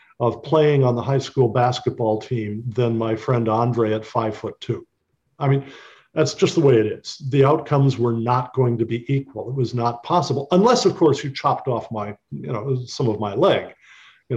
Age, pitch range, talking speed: 50-69, 120-145 Hz, 210 wpm